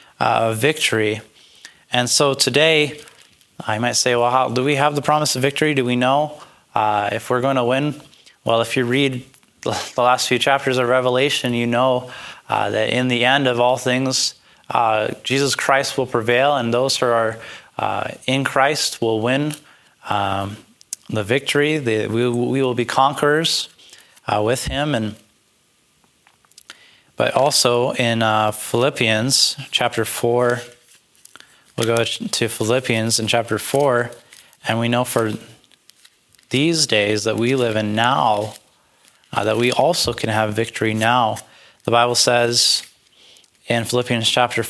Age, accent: 20-39, American